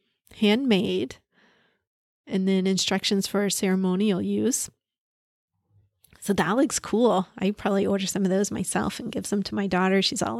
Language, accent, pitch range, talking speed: English, American, 185-215 Hz, 150 wpm